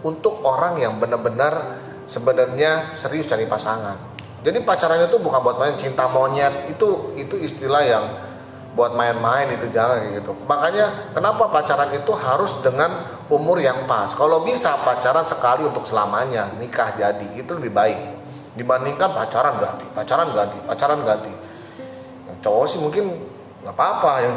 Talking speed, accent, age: 145 wpm, native, 30-49